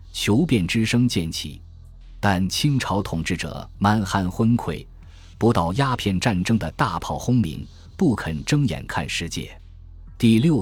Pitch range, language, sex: 85-115 Hz, Chinese, male